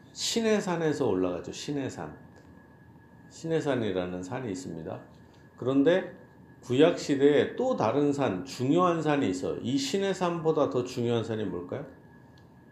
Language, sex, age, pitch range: Korean, male, 50-69, 115-170 Hz